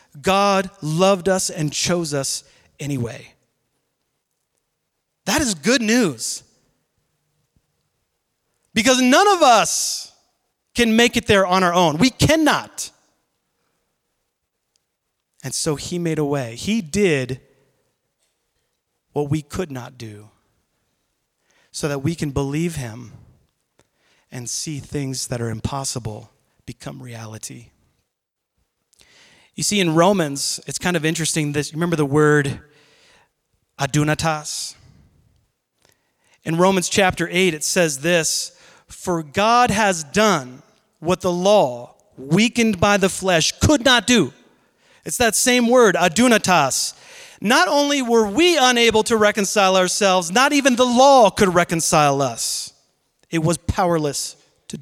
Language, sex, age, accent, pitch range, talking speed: English, male, 30-49, American, 140-210 Hz, 120 wpm